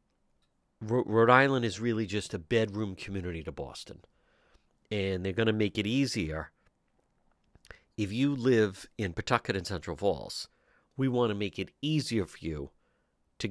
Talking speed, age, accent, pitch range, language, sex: 150 wpm, 50-69, American, 100-130 Hz, English, male